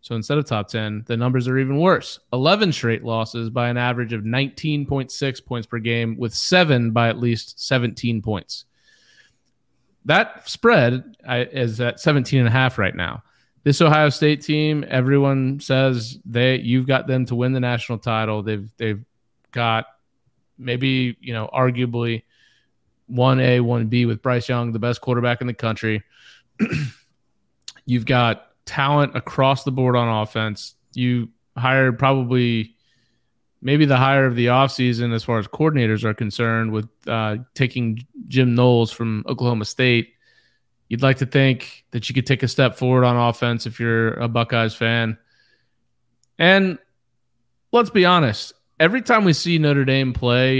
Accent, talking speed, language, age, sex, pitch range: American, 160 wpm, English, 30-49, male, 115-130 Hz